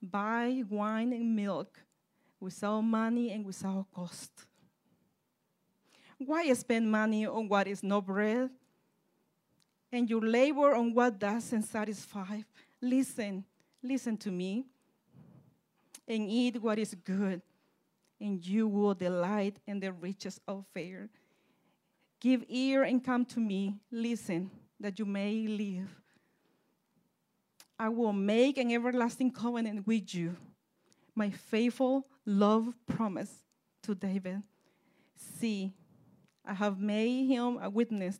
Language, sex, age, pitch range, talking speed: English, female, 40-59, 200-235 Hz, 115 wpm